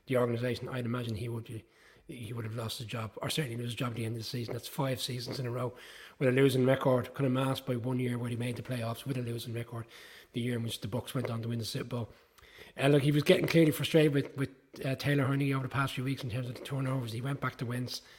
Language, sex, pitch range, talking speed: English, male, 120-135 Hz, 295 wpm